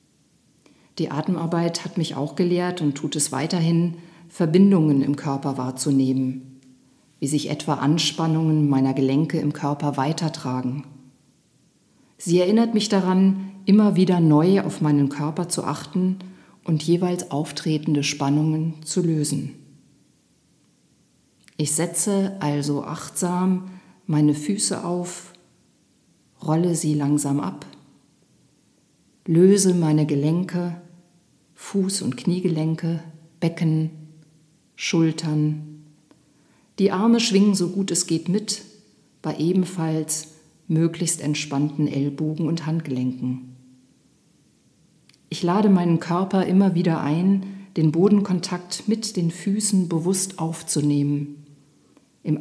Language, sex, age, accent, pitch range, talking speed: German, female, 50-69, German, 150-180 Hz, 105 wpm